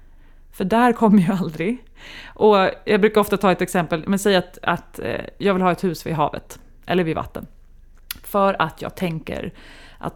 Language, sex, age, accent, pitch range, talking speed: Swedish, female, 30-49, native, 155-205 Hz, 185 wpm